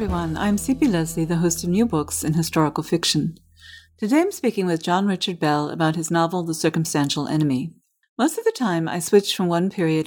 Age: 40-59